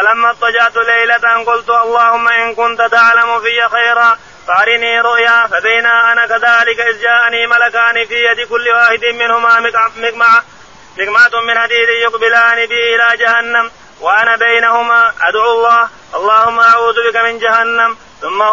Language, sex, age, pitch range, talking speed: Arabic, male, 30-49, 230-235 Hz, 130 wpm